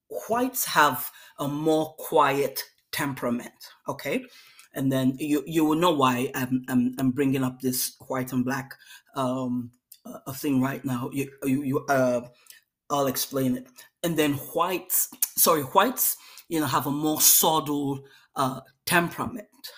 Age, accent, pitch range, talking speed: 30-49, Nigerian, 135-160 Hz, 145 wpm